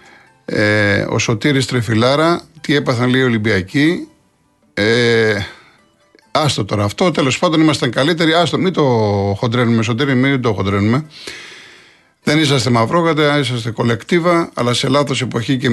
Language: Greek